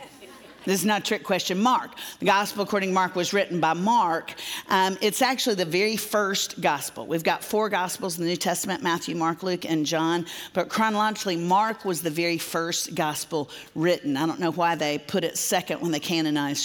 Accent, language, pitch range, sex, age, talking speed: American, English, 170-215 Hz, female, 50-69, 200 wpm